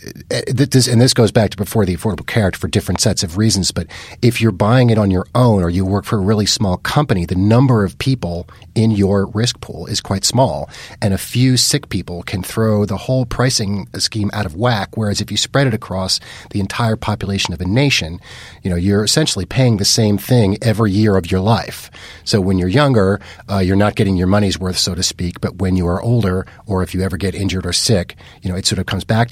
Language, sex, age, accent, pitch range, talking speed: English, male, 40-59, American, 95-120 Hz, 235 wpm